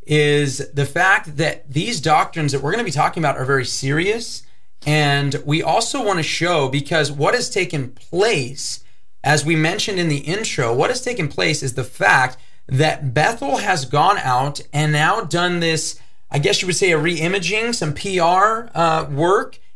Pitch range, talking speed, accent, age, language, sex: 140-170 Hz, 180 wpm, American, 30-49, English, male